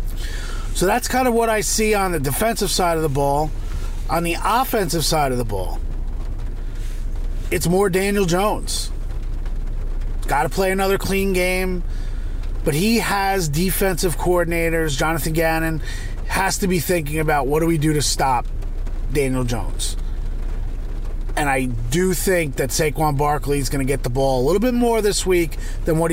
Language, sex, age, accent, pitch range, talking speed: English, male, 30-49, American, 115-185 Hz, 165 wpm